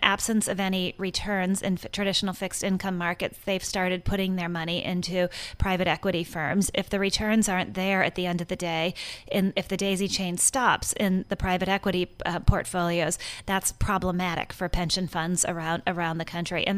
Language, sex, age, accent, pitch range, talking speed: English, female, 30-49, American, 180-205 Hz, 180 wpm